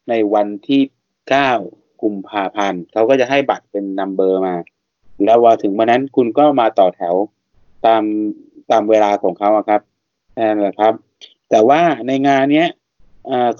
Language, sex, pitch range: Thai, male, 110-140 Hz